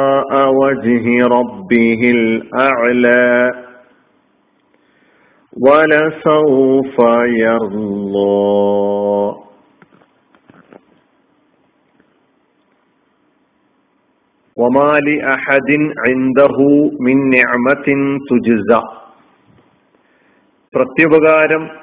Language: Malayalam